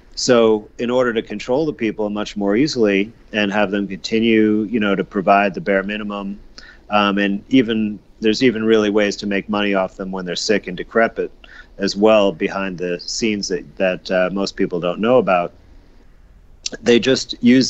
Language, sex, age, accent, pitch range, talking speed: English, male, 40-59, American, 95-105 Hz, 185 wpm